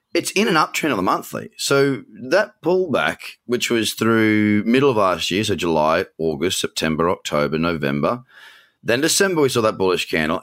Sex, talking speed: male, 175 wpm